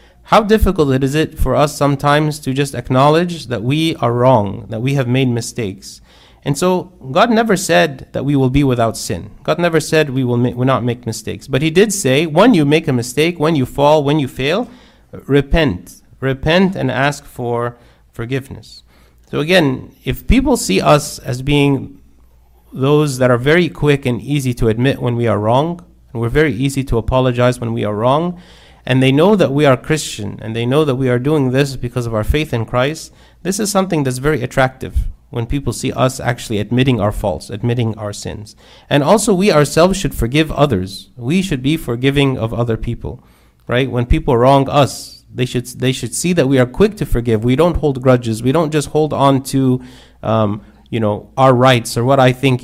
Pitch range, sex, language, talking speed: 120-145 Hz, male, English, 205 wpm